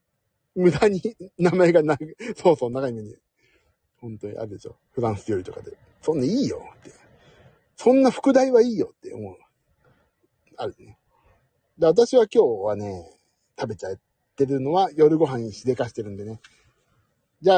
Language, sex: Japanese, male